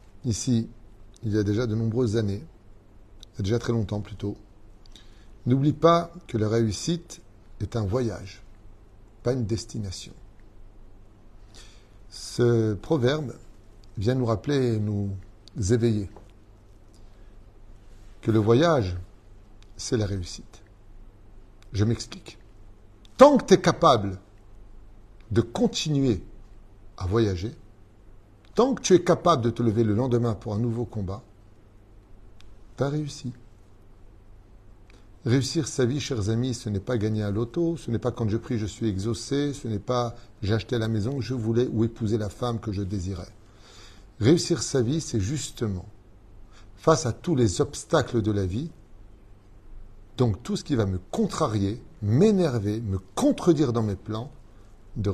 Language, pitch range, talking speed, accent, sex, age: French, 100-120 Hz, 140 wpm, French, male, 50-69